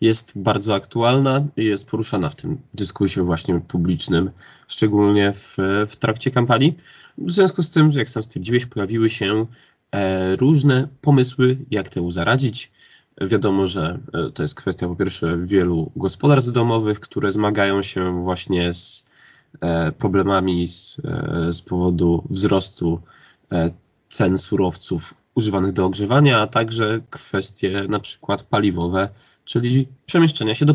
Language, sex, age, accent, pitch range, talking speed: Polish, male, 20-39, native, 95-130 Hz, 125 wpm